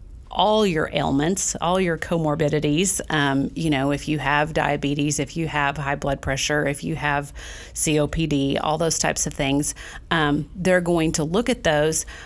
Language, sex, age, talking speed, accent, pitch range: English, female, 40-59, 170 wpm, American, 150-180 Hz